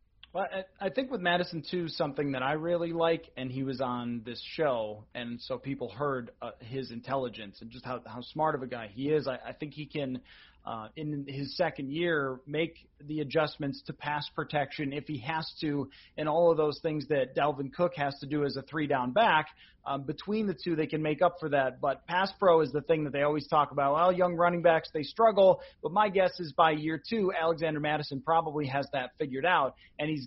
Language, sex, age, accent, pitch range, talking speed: English, male, 30-49, American, 140-180 Hz, 220 wpm